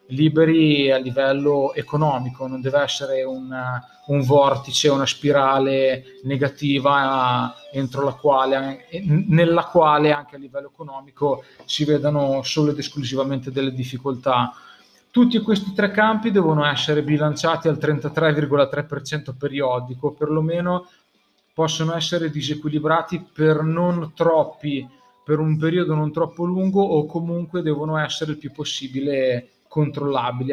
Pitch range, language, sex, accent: 135-155 Hz, Italian, male, native